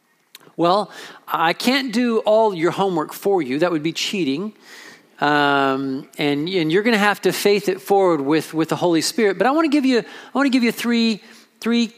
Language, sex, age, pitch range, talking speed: English, male, 40-59, 175-250 Hz, 190 wpm